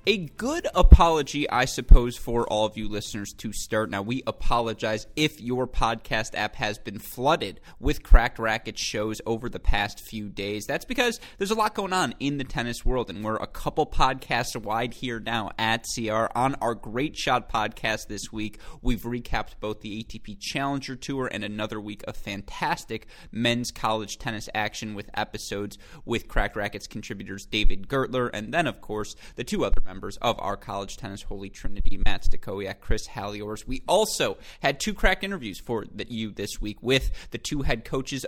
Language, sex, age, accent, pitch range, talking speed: English, male, 20-39, American, 105-130 Hz, 185 wpm